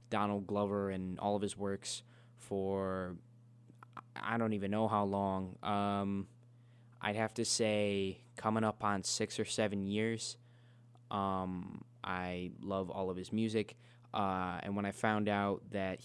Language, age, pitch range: English, 20-39, 95-115 Hz